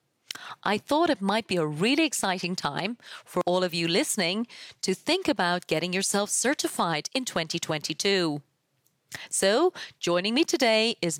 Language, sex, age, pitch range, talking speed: English, female, 30-49, 170-230 Hz, 145 wpm